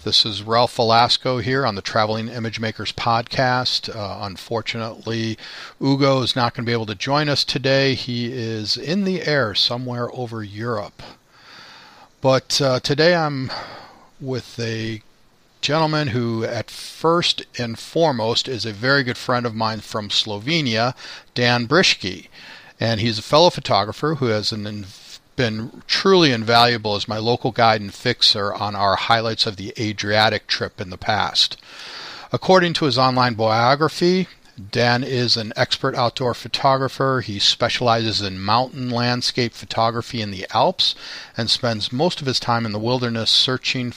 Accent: American